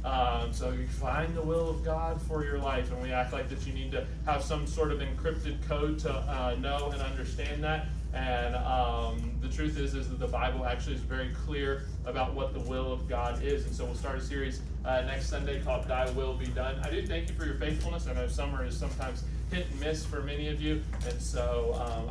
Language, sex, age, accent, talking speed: English, male, 30-49, American, 235 wpm